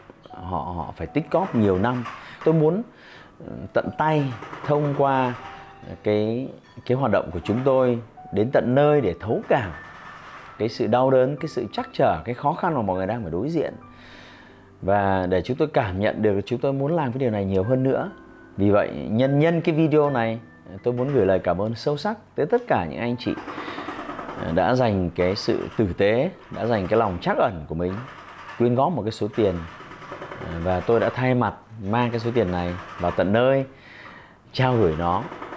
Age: 30-49